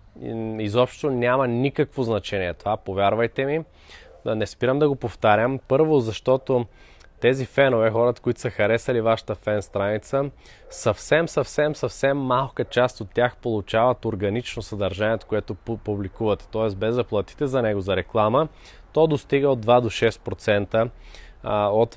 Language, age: Bulgarian, 20-39